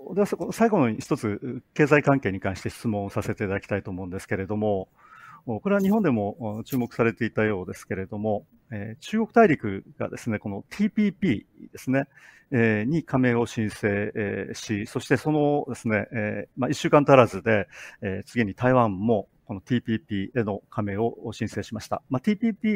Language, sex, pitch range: Japanese, male, 105-135 Hz